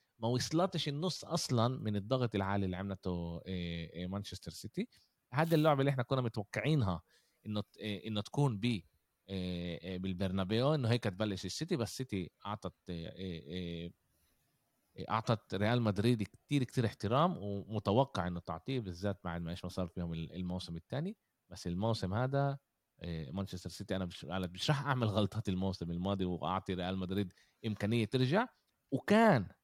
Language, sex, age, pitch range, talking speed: Arabic, male, 30-49, 95-125 Hz, 130 wpm